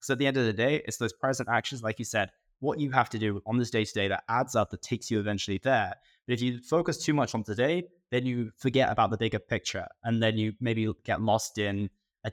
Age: 20-39